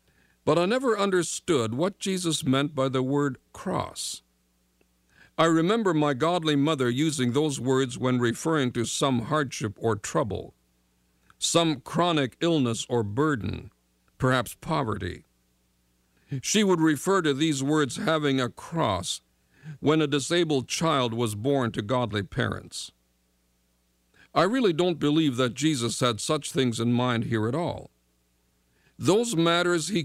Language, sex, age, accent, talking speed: English, male, 50-69, American, 135 wpm